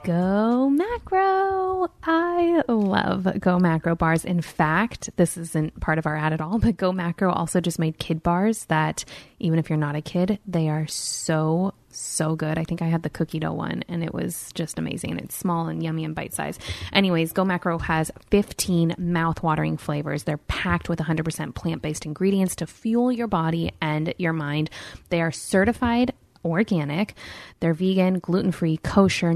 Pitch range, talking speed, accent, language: 165-205 Hz, 175 wpm, American, English